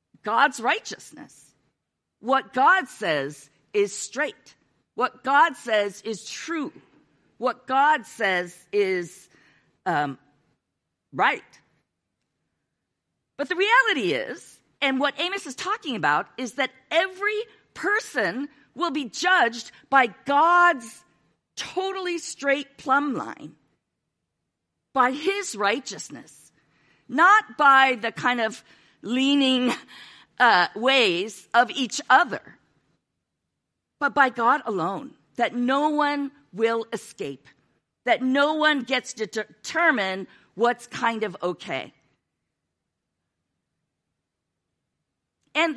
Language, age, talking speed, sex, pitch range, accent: English, 50-69, 100 wpm, female, 225-330 Hz, American